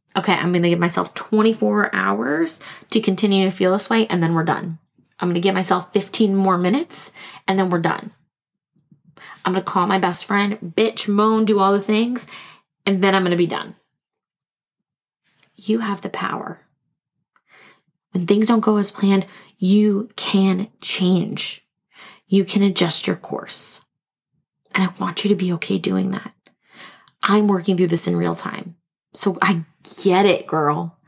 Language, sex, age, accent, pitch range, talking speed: English, female, 20-39, American, 180-210 Hz, 170 wpm